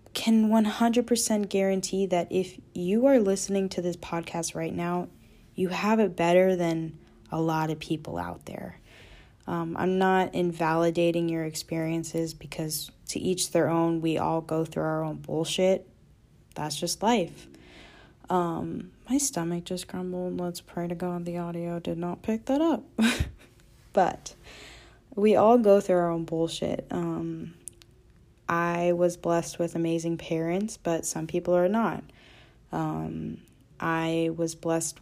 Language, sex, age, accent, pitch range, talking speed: English, female, 20-39, American, 160-185 Hz, 150 wpm